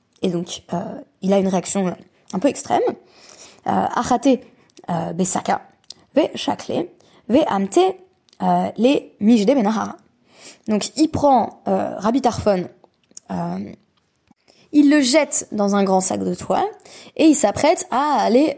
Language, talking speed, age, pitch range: French, 120 wpm, 20-39, 190-260 Hz